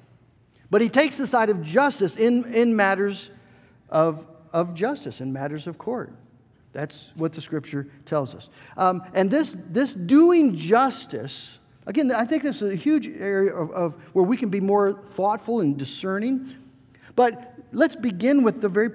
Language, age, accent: English, 50-69, American